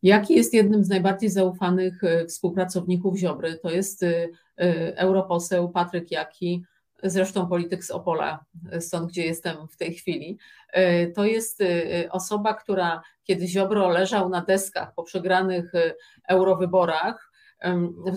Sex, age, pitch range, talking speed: female, 30-49, 180-215 Hz, 120 wpm